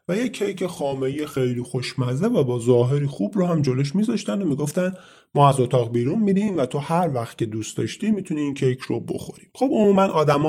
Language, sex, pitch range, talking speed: Persian, male, 125-185 Hz, 210 wpm